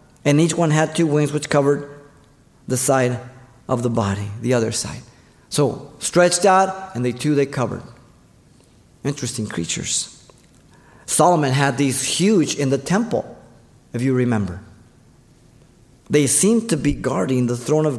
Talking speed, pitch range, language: 145 wpm, 120-155 Hz, English